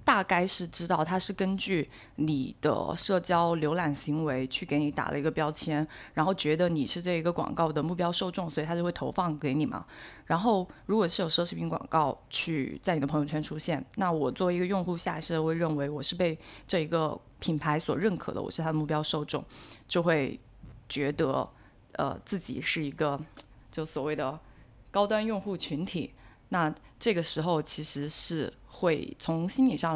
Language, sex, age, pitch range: Chinese, female, 20-39, 150-180 Hz